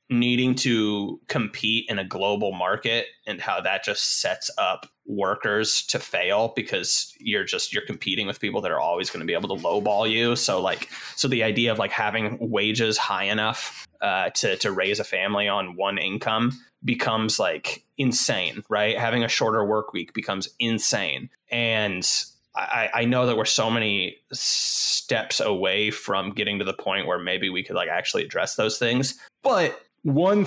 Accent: American